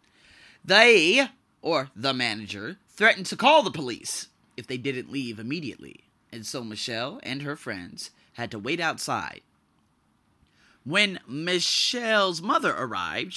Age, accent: 30-49, American